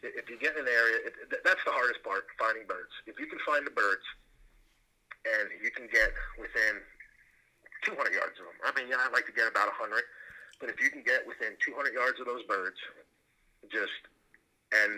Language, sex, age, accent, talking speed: English, male, 40-59, American, 195 wpm